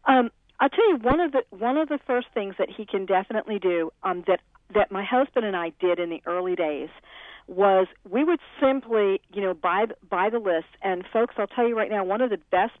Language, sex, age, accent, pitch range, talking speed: English, female, 50-69, American, 180-220 Hz, 235 wpm